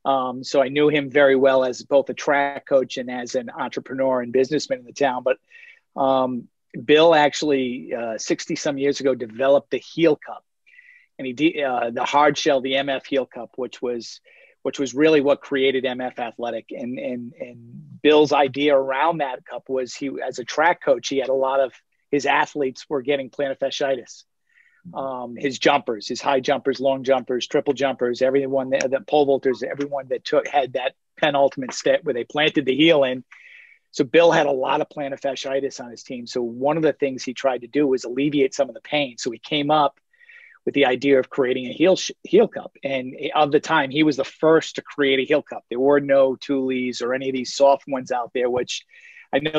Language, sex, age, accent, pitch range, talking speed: English, male, 40-59, American, 130-150 Hz, 210 wpm